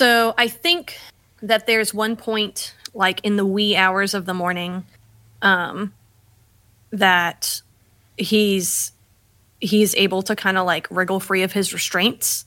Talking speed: 140 wpm